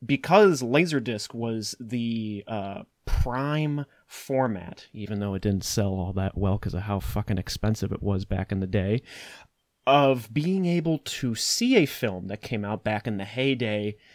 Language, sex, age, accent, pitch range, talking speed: English, male, 30-49, American, 105-140 Hz, 170 wpm